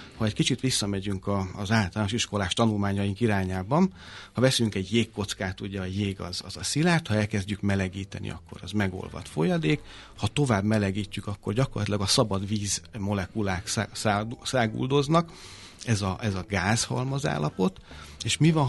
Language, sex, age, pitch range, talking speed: Hungarian, male, 30-49, 95-120 Hz, 145 wpm